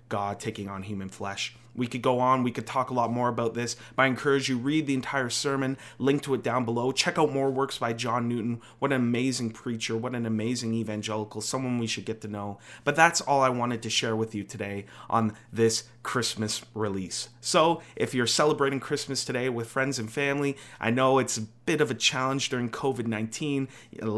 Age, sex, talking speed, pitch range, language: 30-49, male, 215 wpm, 115-135 Hz, English